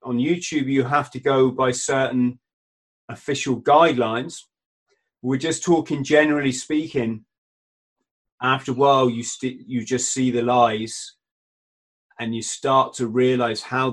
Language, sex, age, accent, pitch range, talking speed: English, male, 30-49, British, 120-140 Hz, 135 wpm